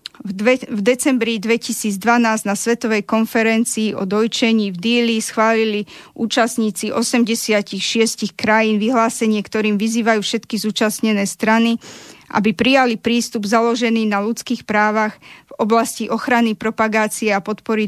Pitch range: 210-235 Hz